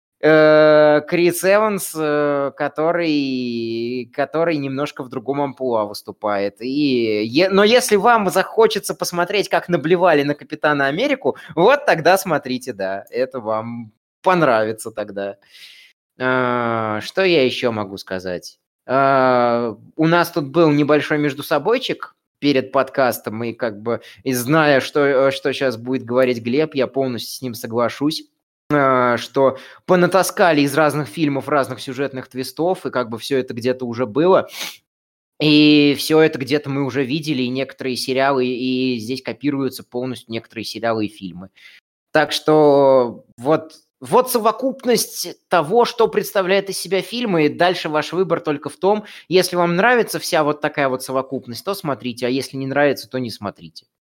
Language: Russian